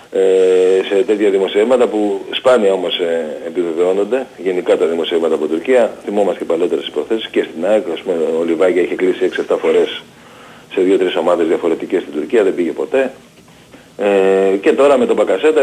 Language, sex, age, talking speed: Greek, male, 40-59, 155 wpm